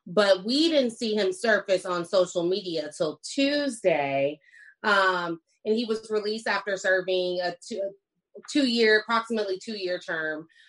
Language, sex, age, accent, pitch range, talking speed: English, female, 20-39, American, 175-225 Hz, 135 wpm